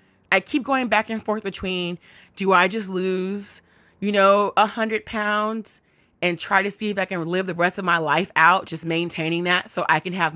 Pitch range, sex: 185-270 Hz, female